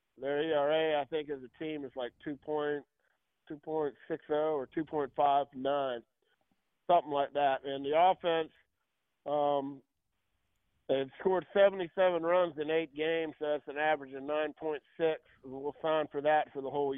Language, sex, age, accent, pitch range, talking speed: English, male, 50-69, American, 140-165 Hz, 140 wpm